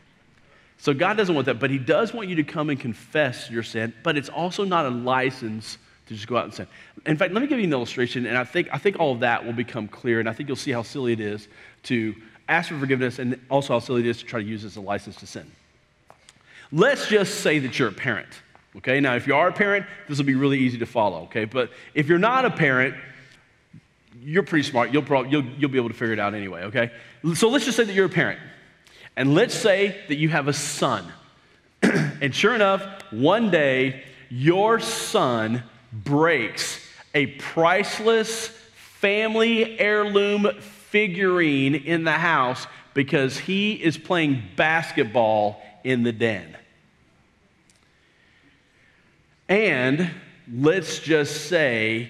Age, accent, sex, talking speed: 40-59, American, male, 190 wpm